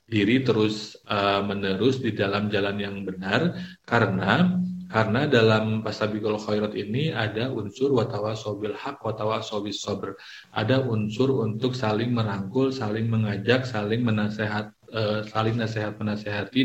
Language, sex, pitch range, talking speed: Indonesian, male, 105-115 Hz, 130 wpm